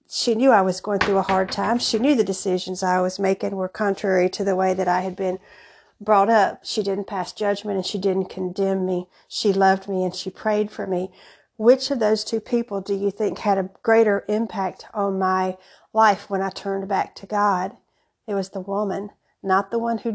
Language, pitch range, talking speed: English, 190-220 Hz, 215 wpm